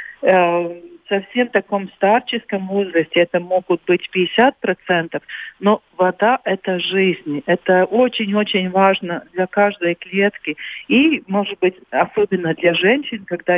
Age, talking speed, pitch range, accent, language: 50-69, 115 wpm, 175-220 Hz, native, Russian